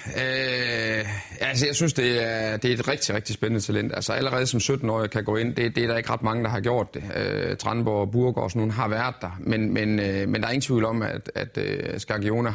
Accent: native